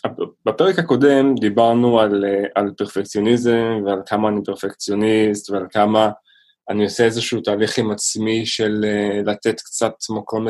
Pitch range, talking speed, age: 100-115 Hz, 125 wpm, 20-39